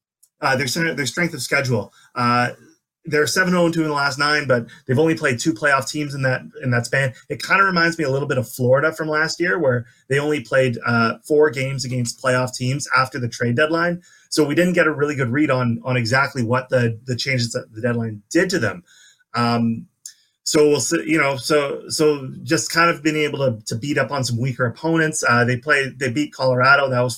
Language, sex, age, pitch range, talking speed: English, male, 30-49, 125-155 Hz, 230 wpm